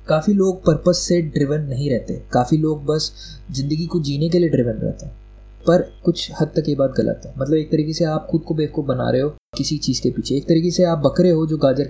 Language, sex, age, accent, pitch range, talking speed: Hindi, male, 20-39, native, 135-160 Hz, 245 wpm